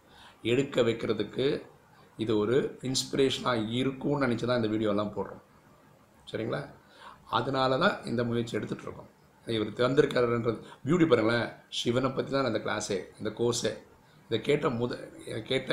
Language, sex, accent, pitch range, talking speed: Tamil, male, native, 110-135 Hz, 120 wpm